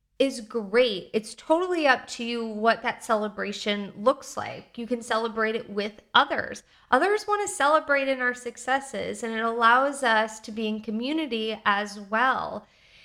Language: English